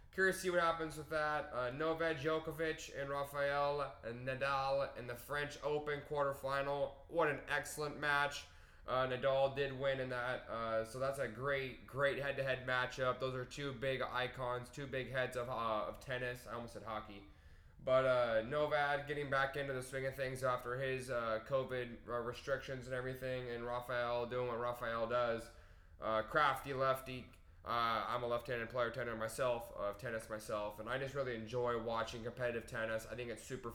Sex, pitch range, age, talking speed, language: male, 115-135 Hz, 10-29, 180 wpm, English